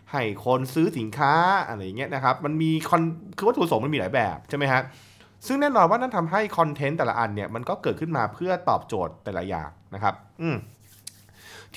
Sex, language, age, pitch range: male, Thai, 20-39, 110-170 Hz